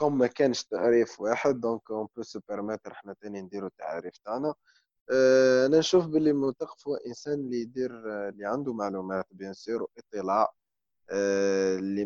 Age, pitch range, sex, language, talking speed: 20-39, 100-125 Hz, male, Arabic, 145 wpm